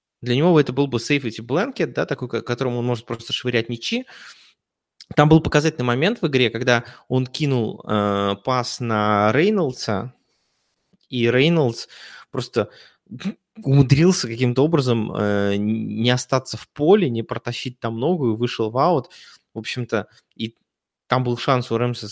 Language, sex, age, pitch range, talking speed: Russian, male, 20-39, 115-140 Hz, 150 wpm